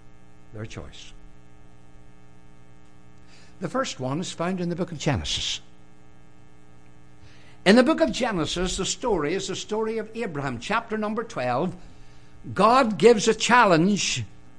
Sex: male